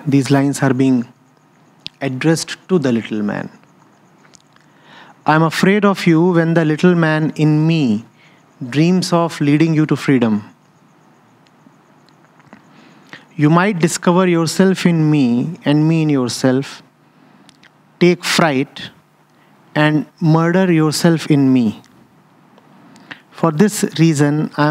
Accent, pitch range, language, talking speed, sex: Indian, 140-165 Hz, English, 115 wpm, male